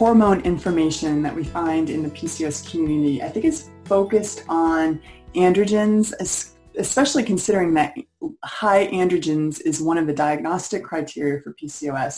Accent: American